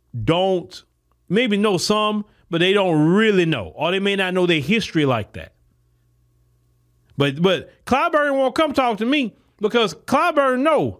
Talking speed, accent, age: 160 wpm, American, 40-59